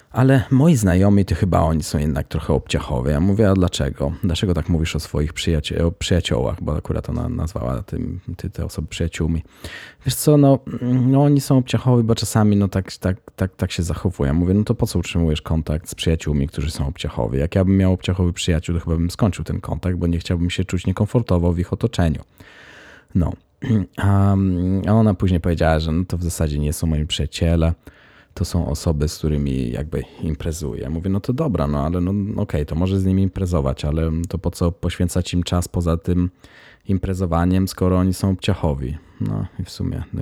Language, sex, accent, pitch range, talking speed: Polish, male, native, 80-95 Hz, 200 wpm